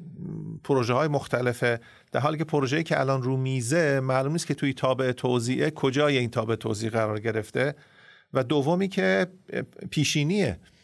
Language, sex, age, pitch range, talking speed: Persian, male, 40-59, 135-160 Hz, 150 wpm